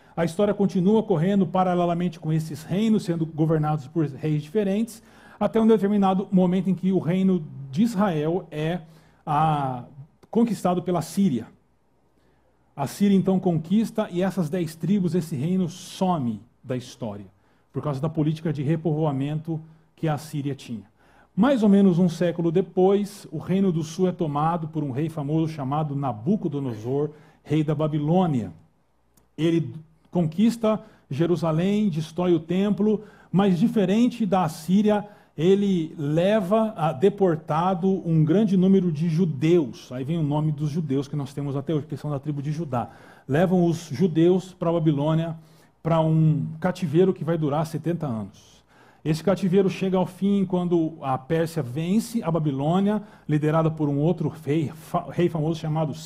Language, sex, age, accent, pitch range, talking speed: Portuguese, male, 40-59, Brazilian, 150-190 Hz, 150 wpm